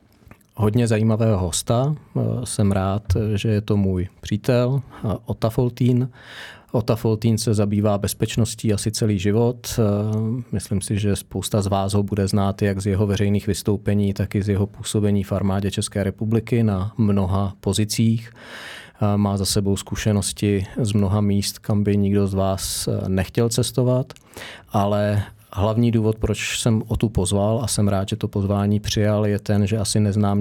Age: 40-59